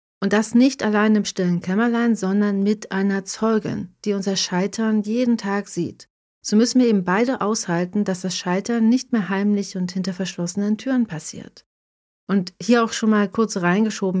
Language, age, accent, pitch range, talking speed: German, 40-59, German, 190-230 Hz, 175 wpm